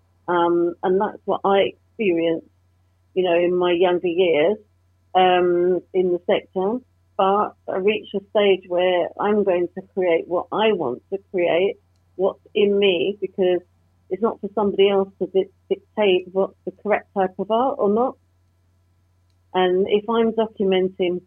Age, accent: 40-59, British